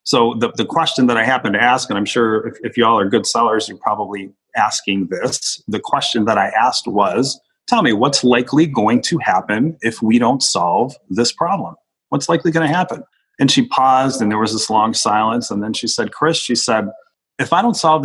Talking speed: 220 wpm